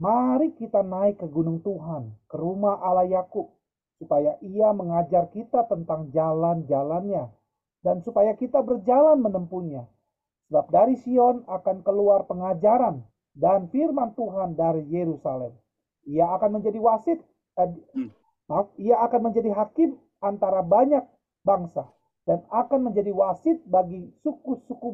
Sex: male